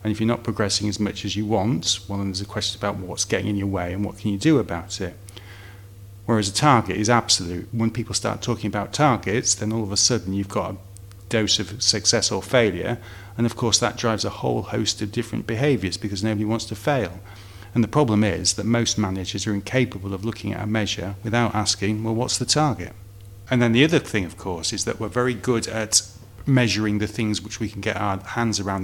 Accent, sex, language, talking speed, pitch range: British, male, English, 230 wpm, 100-115 Hz